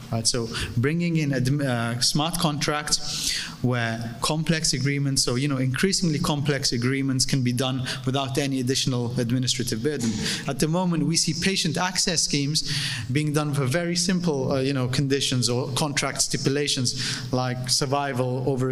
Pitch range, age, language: 125-150 Hz, 30-49, English